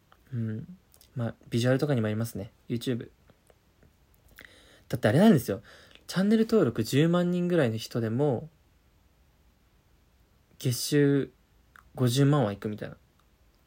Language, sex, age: Japanese, male, 20-39